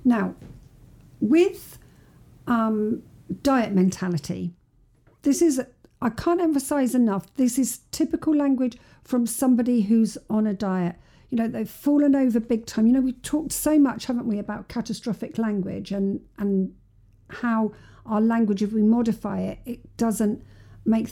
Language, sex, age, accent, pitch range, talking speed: English, female, 50-69, British, 195-270 Hz, 150 wpm